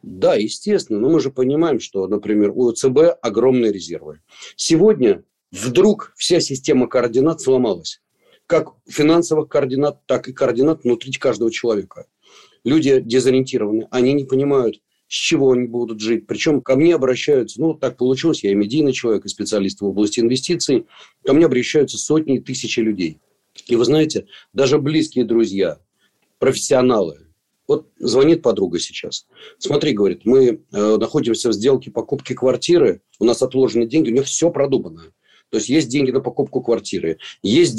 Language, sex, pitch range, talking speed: Russian, male, 115-150 Hz, 150 wpm